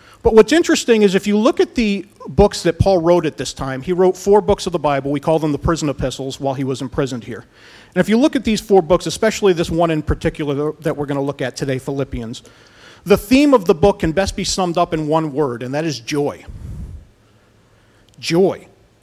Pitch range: 135-195 Hz